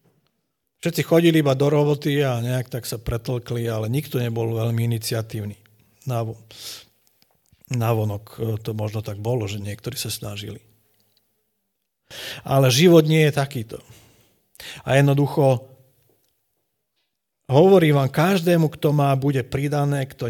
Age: 50-69